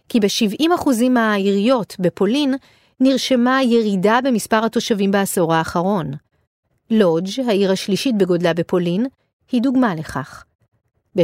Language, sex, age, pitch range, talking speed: Hebrew, female, 40-59, 190-255 Hz, 100 wpm